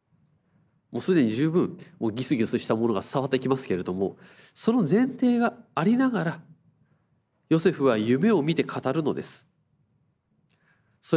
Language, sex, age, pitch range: Japanese, male, 30-49, 135-190 Hz